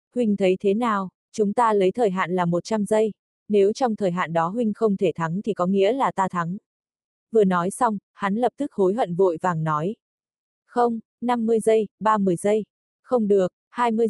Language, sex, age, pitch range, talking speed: Vietnamese, female, 20-39, 185-225 Hz, 195 wpm